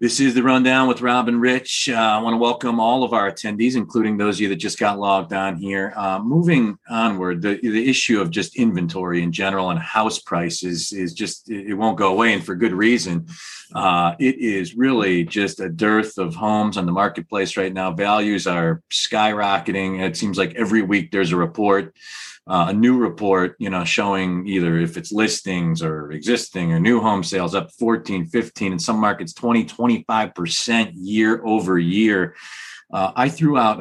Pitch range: 90-110 Hz